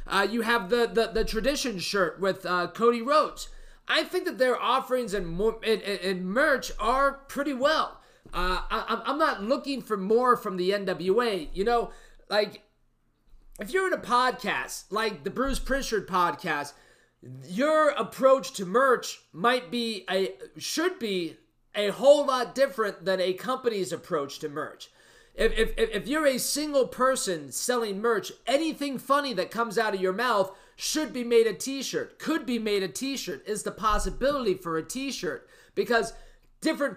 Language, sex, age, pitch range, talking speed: English, male, 30-49, 195-265 Hz, 165 wpm